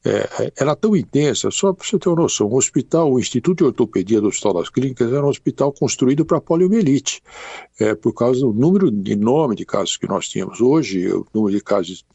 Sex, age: male, 60-79